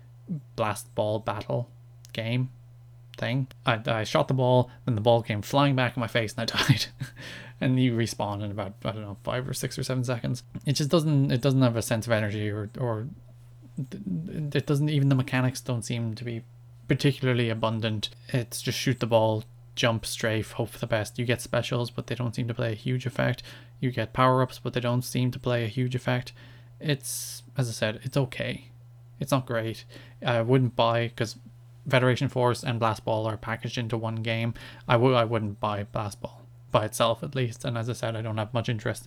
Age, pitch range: 20-39, 115-130 Hz